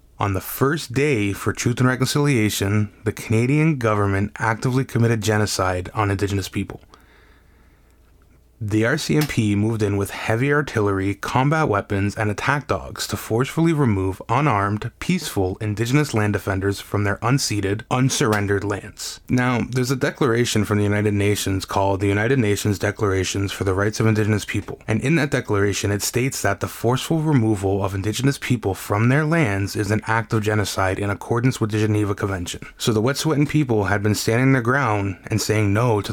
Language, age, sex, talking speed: English, 20-39, male, 170 wpm